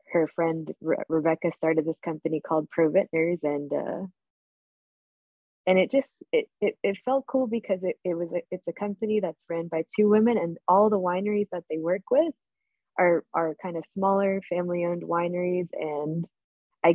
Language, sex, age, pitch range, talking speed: English, female, 20-39, 160-190 Hz, 180 wpm